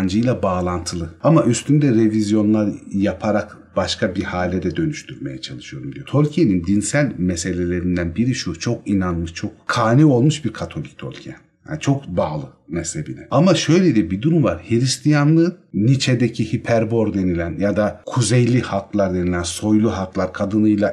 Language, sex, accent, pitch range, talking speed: Turkish, male, native, 105-150 Hz, 140 wpm